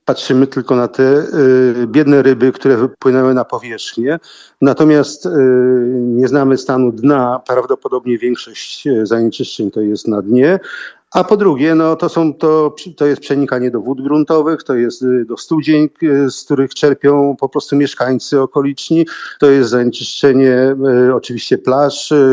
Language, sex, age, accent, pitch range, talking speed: Polish, male, 50-69, native, 125-150 Hz, 130 wpm